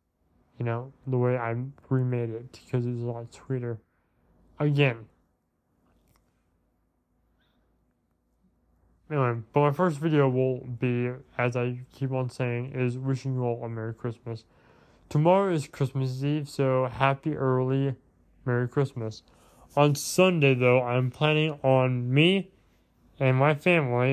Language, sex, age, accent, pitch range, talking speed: English, male, 20-39, American, 115-135 Hz, 125 wpm